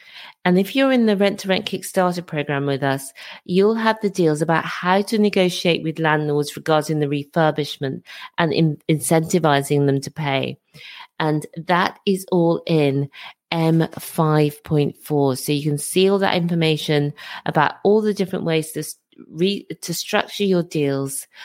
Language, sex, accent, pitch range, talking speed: English, female, British, 145-190 Hz, 150 wpm